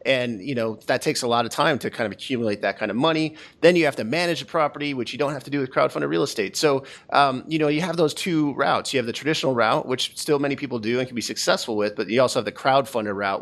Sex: male